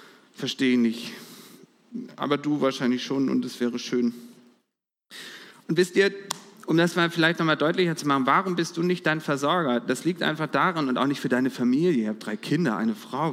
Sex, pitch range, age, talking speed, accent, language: male, 165-255 Hz, 40-59, 200 wpm, German, German